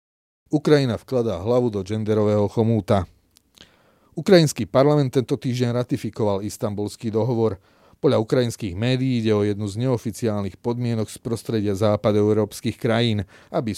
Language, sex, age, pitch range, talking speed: Slovak, male, 30-49, 100-120 Hz, 120 wpm